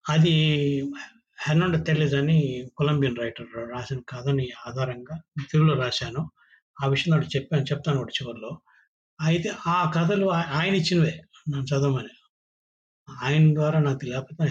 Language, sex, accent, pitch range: Telugu, male, native, 135-165 Hz